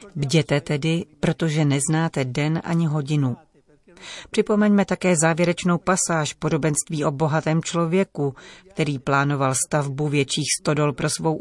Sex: female